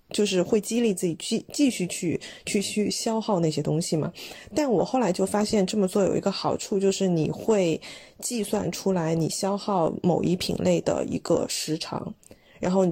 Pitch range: 175-210 Hz